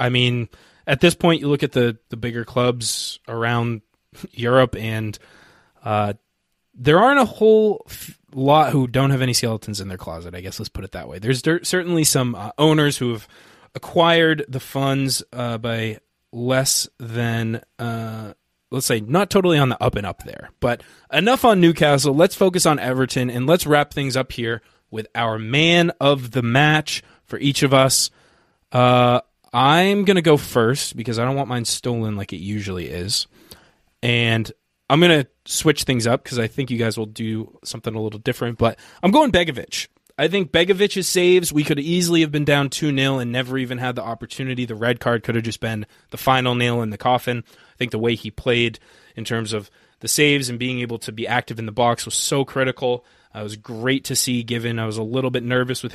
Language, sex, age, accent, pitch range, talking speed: English, male, 20-39, American, 115-140 Hz, 205 wpm